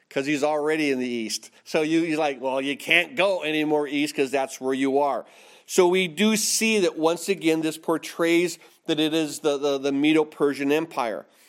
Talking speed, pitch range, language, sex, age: 210 wpm, 145-180 Hz, English, male, 40-59